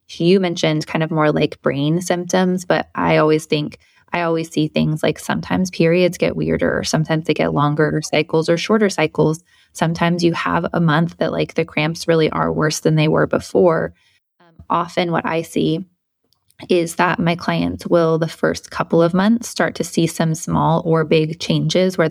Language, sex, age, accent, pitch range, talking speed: English, female, 20-39, American, 155-175 Hz, 190 wpm